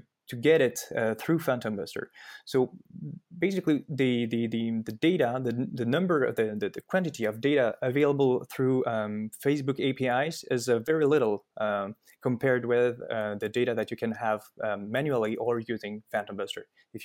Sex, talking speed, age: male, 175 wpm, 20-39